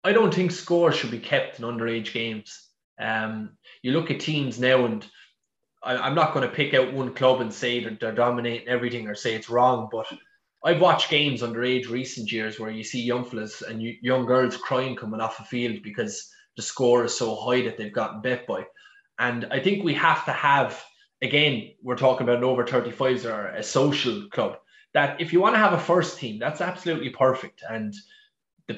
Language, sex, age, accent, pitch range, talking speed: English, male, 20-39, Irish, 120-155 Hz, 200 wpm